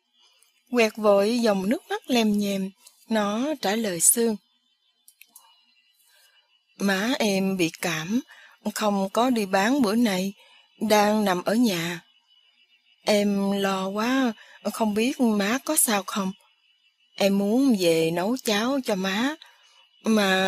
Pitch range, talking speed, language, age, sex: 195-250 Hz, 125 wpm, English, 20-39, female